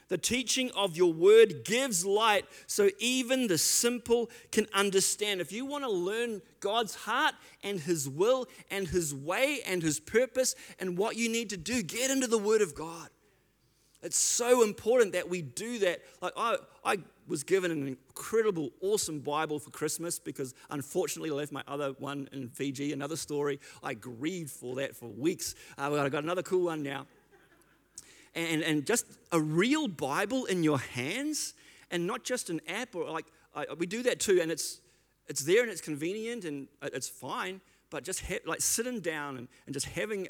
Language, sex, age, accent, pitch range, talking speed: English, male, 30-49, Australian, 140-225 Hz, 180 wpm